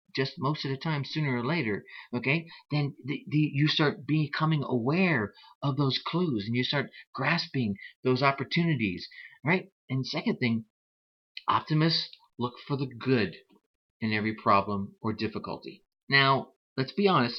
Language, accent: English, American